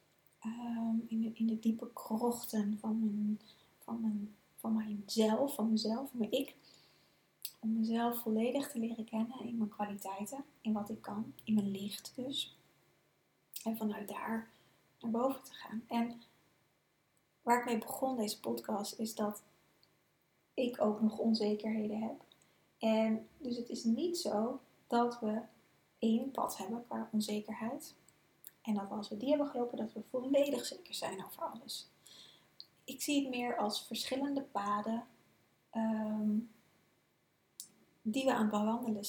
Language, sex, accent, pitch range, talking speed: Dutch, female, Dutch, 215-240 Hz, 145 wpm